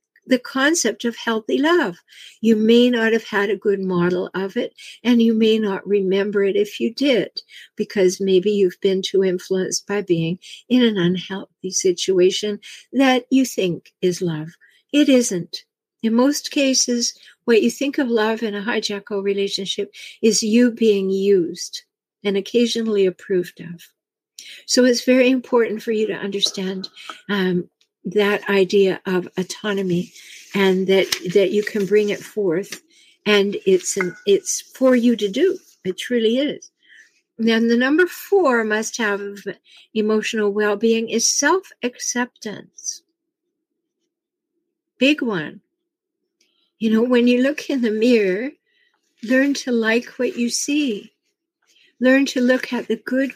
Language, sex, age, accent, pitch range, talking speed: English, female, 60-79, American, 200-280 Hz, 145 wpm